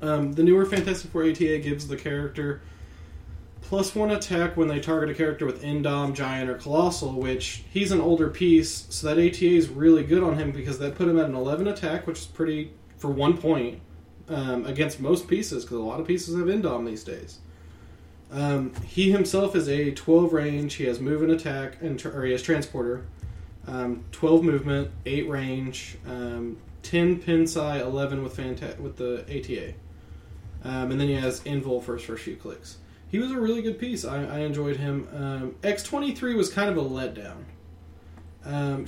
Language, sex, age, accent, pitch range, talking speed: English, male, 20-39, American, 125-170 Hz, 185 wpm